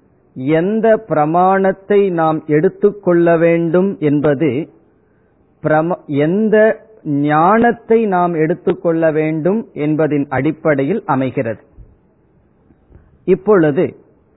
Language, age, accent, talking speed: Tamil, 40-59, native, 65 wpm